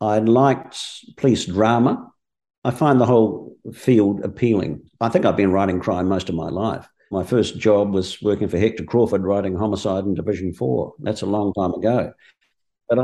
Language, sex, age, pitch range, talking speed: English, male, 50-69, 95-130 Hz, 180 wpm